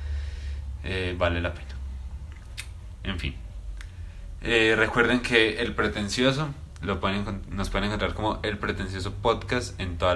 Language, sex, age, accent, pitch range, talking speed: Spanish, male, 20-39, Colombian, 85-100 Hz, 130 wpm